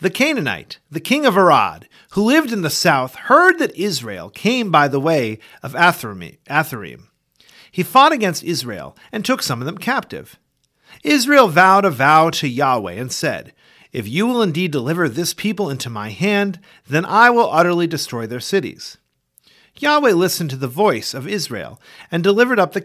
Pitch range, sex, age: 135-210 Hz, male, 40-59